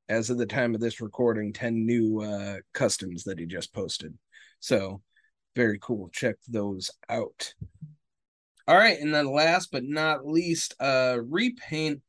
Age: 30-49